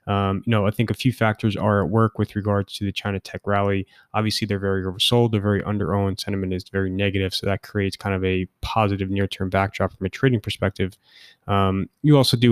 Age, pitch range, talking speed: 20-39, 100-110 Hz, 220 wpm